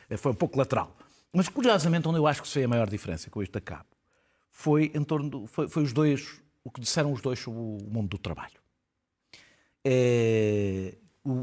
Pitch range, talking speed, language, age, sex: 115-145 Hz, 205 wpm, Portuguese, 50-69, male